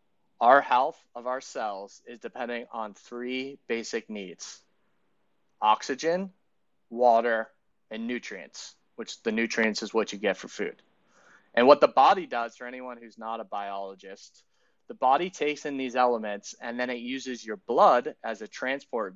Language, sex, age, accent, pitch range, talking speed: English, male, 30-49, American, 110-130 Hz, 155 wpm